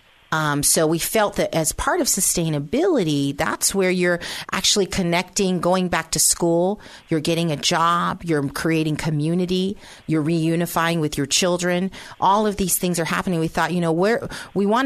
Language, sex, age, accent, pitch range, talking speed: English, female, 40-59, American, 155-195 Hz, 175 wpm